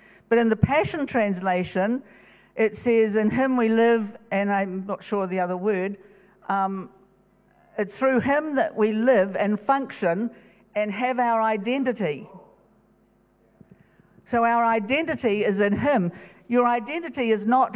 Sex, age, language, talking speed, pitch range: female, 50-69, English, 140 wpm, 210-245 Hz